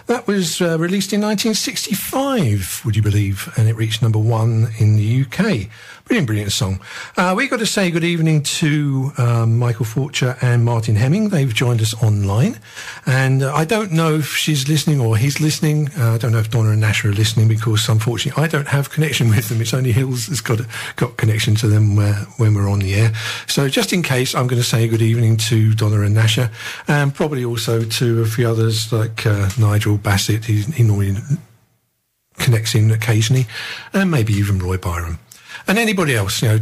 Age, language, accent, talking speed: 50-69, English, British, 205 wpm